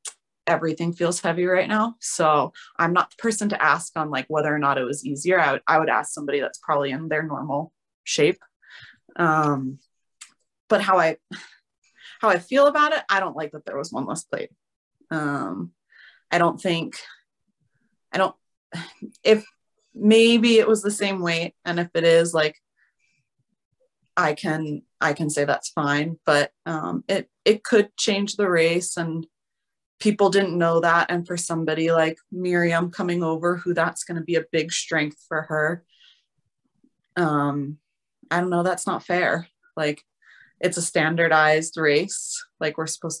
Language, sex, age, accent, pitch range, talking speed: English, female, 30-49, American, 155-180 Hz, 165 wpm